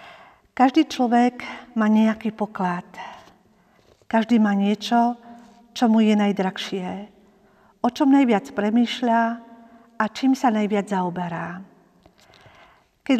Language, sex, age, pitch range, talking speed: Slovak, female, 50-69, 205-245 Hz, 100 wpm